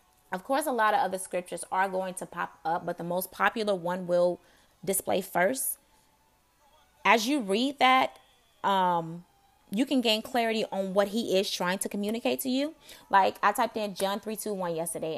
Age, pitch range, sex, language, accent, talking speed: 20-39, 180-230 Hz, female, English, American, 185 wpm